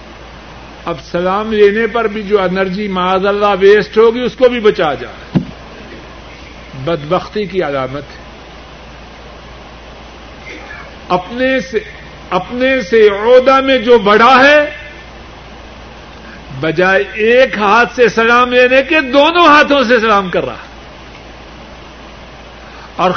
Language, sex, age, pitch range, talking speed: Urdu, male, 50-69, 185-255 Hz, 110 wpm